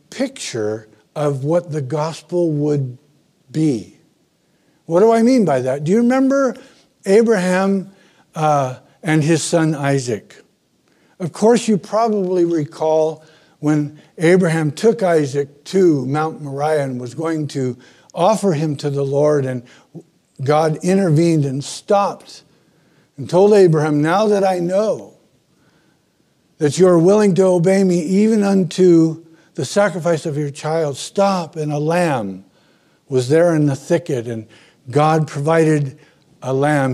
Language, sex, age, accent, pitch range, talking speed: English, male, 60-79, American, 140-185 Hz, 135 wpm